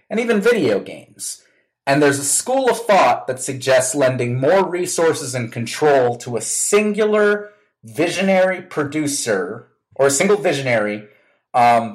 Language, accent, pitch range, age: English, American, 125-170 Hz, 30-49